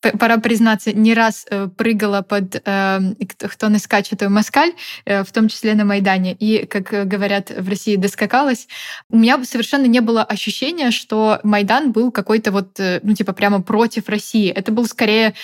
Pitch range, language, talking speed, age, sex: 210-245 Hz, Russian, 165 wpm, 20-39, female